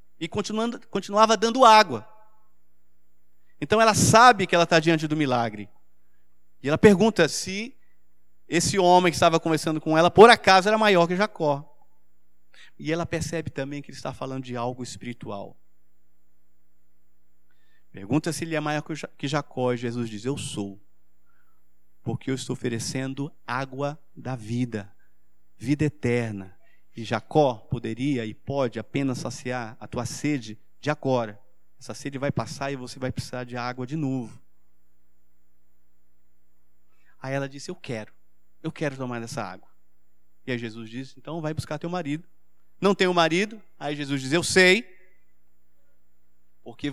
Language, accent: Portuguese, Brazilian